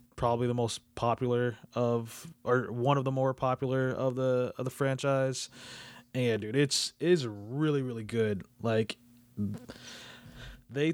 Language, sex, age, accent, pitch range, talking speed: English, male, 20-39, American, 115-135 Hz, 150 wpm